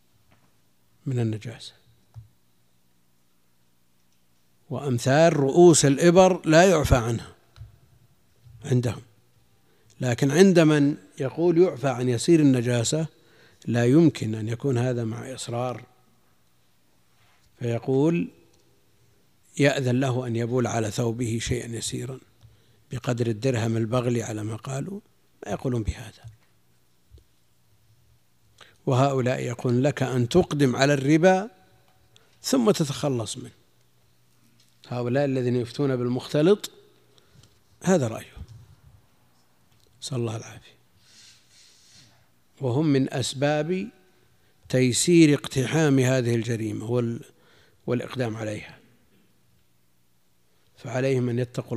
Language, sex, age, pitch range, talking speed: Arabic, male, 50-69, 105-135 Hz, 85 wpm